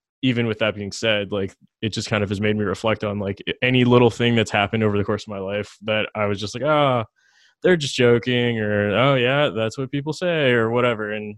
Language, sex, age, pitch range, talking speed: English, male, 20-39, 100-115 Hz, 245 wpm